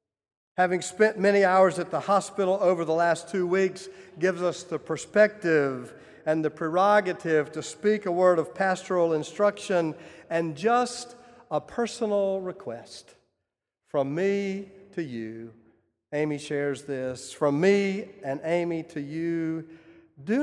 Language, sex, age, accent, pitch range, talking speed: English, male, 50-69, American, 155-210 Hz, 130 wpm